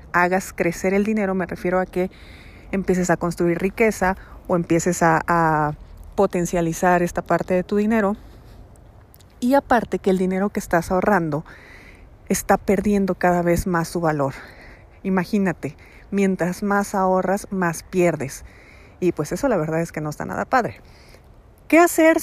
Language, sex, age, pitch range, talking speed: Spanish, female, 40-59, 170-200 Hz, 150 wpm